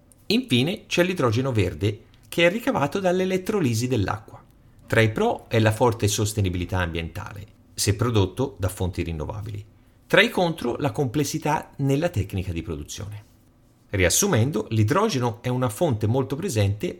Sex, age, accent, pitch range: male, 40-59, native, 100-135 Hz